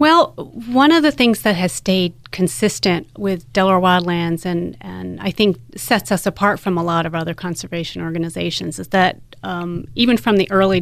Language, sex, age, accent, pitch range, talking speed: English, female, 30-49, American, 165-195 Hz, 185 wpm